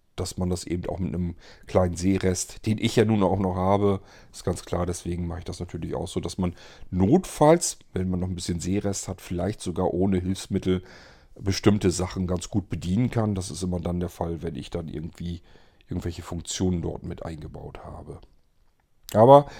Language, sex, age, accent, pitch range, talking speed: German, male, 40-59, German, 90-110 Hz, 195 wpm